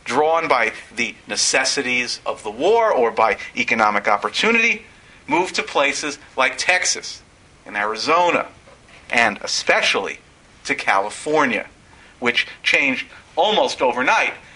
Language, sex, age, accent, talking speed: English, male, 50-69, American, 105 wpm